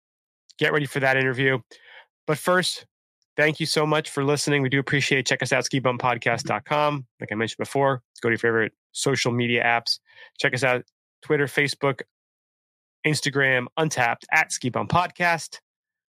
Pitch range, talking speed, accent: 120-145 Hz, 155 wpm, American